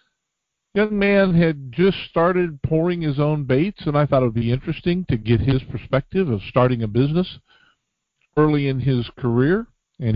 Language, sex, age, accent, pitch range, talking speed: English, male, 50-69, American, 120-175 Hz, 170 wpm